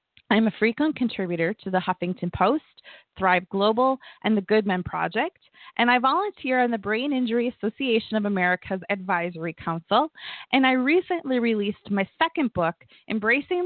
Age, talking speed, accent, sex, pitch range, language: 20-39, 155 wpm, American, female, 190-255 Hz, English